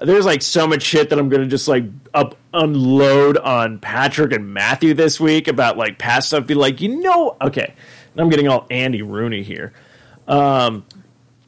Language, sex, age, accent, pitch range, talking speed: English, male, 30-49, American, 125-155 Hz, 190 wpm